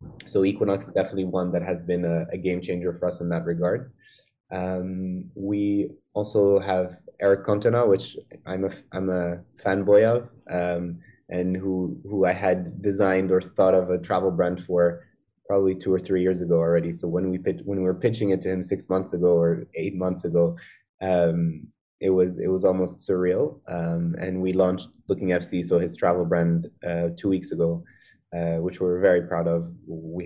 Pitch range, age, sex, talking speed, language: 85-95 Hz, 20-39, male, 190 wpm, Arabic